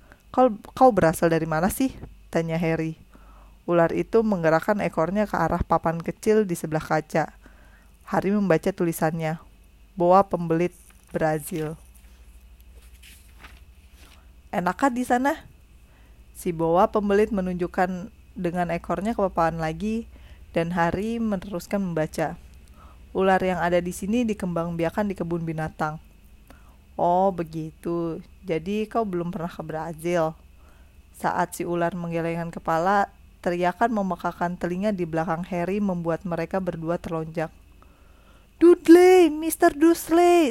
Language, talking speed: Indonesian, 115 wpm